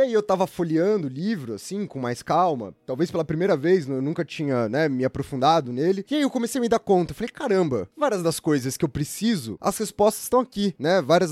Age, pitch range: 20-39, 135-180 Hz